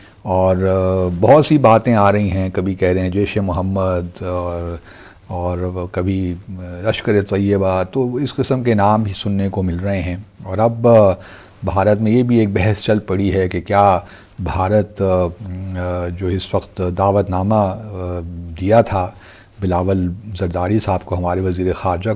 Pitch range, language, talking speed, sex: 95-115 Hz, Urdu, 155 wpm, male